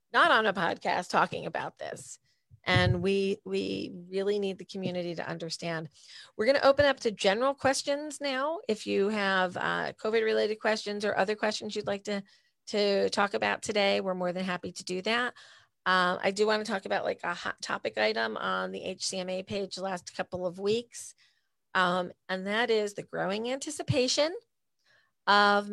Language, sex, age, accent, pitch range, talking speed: English, female, 40-59, American, 175-210 Hz, 175 wpm